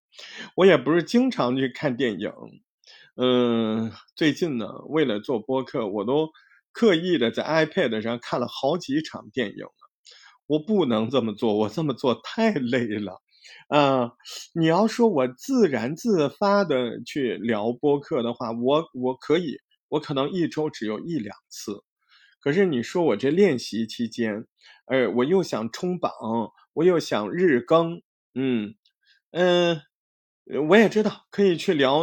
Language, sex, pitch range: Chinese, male, 125-205 Hz